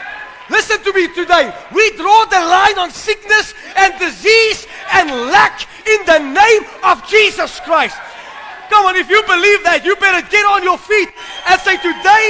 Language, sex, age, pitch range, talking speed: English, male, 30-49, 315-390 Hz, 170 wpm